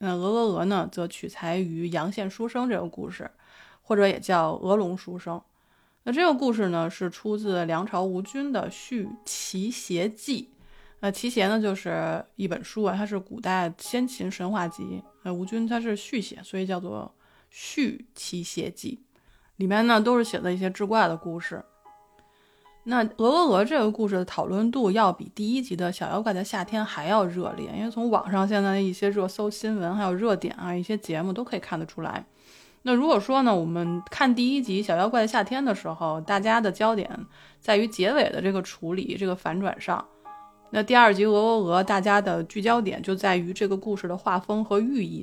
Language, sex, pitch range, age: Chinese, female, 180-225 Hz, 20-39